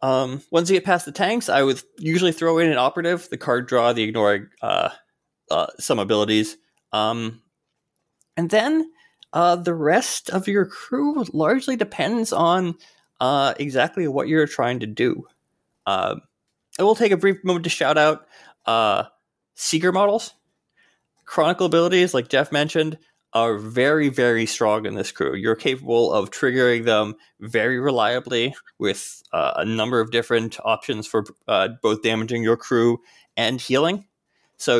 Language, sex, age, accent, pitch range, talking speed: English, male, 20-39, American, 115-175 Hz, 155 wpm